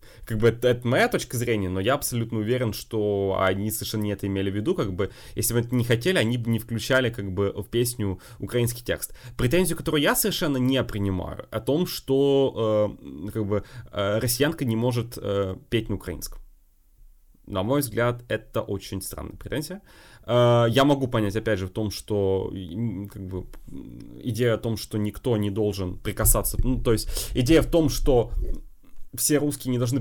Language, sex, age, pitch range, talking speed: Russian, male, 20-39, 100-130 Hz, 185 wpm